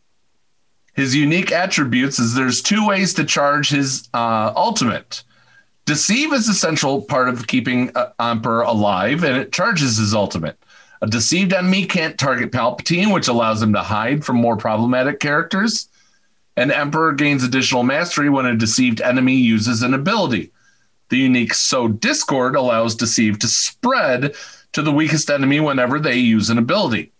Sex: male